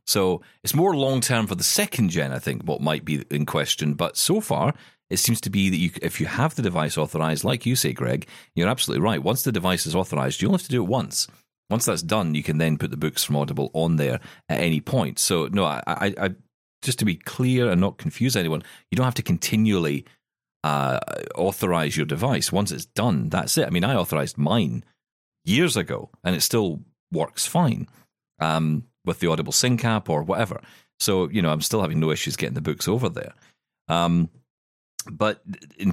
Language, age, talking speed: English, 40-59, 215 wpm